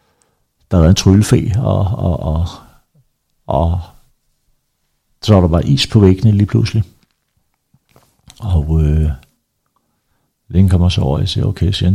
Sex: male